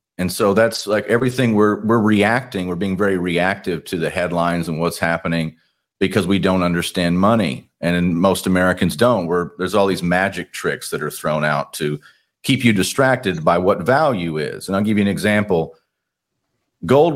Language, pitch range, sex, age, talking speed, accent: English, 85-105 Hz, male, 40-59, 180 wpm, American